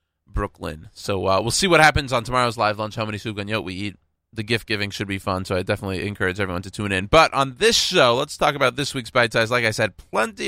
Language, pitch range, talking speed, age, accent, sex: English, 95-135 Hz, 265 wpm, 20-39, American, male